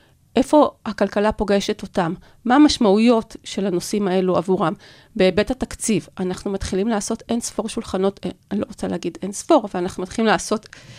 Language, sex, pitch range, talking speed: Hebrew, female, 185-230 Hz, 155 wpm